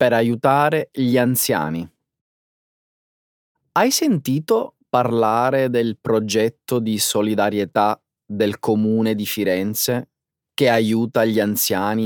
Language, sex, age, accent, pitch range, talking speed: Italian, male, 30-49, native, 100-165 Hz, 95 wpm